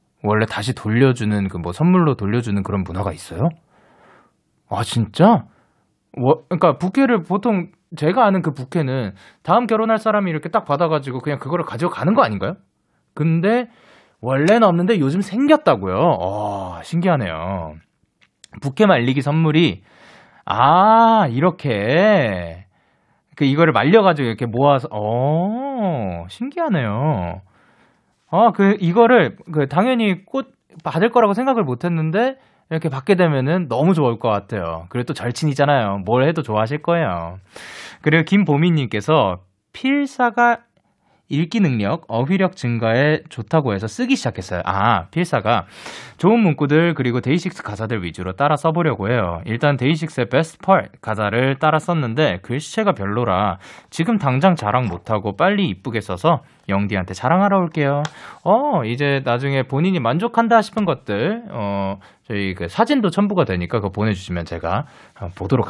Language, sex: Korean, male